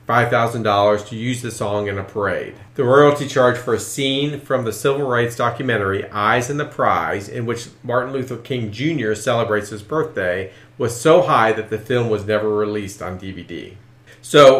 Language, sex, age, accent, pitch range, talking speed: English, male, 40-59, American, 105-130 Hz, 175 wpm